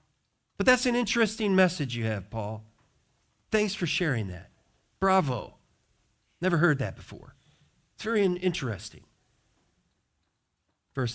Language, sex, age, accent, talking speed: English, male, 40-59, American, 115 wpm